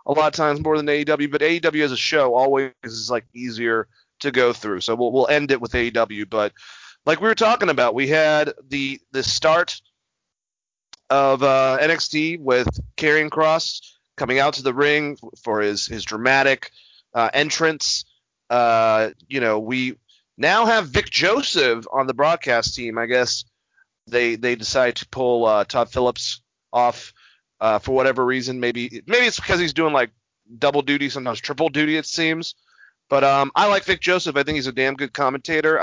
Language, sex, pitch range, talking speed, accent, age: English, male, 125-155 Hz, 180 wpm, American, 30-49